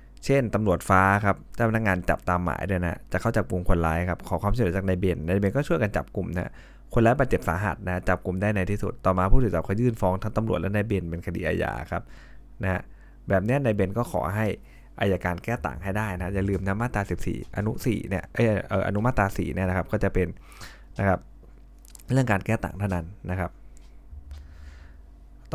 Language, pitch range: Thai, 90-110 Hz